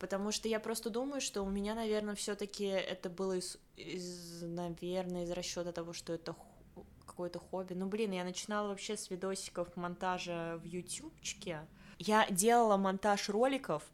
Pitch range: 170-195 Hz